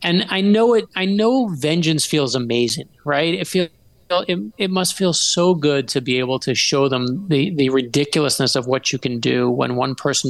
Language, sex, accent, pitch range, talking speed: English, male, American, 130-170 Hz, 205 wpm